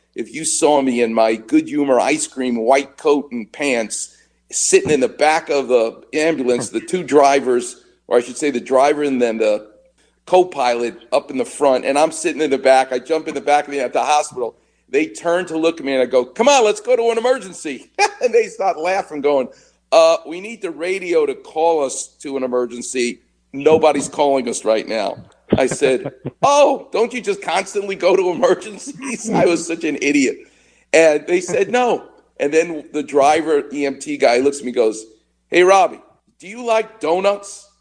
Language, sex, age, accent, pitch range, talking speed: English, male, 50-69, American, 140-230 Hz, 200 wpm